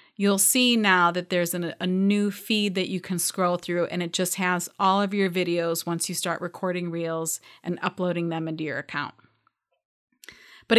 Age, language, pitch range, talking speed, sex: 30-49, English, 180-235 Hz, 185 wpm, female